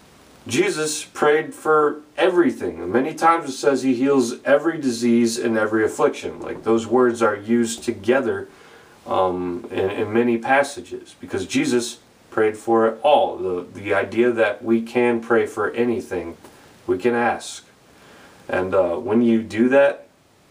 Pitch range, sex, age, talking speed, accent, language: 110-135 Hz, male, 30-49, 145 wpm, American, English